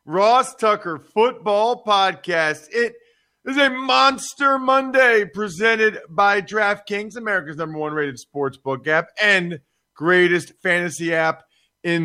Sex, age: male, 40-59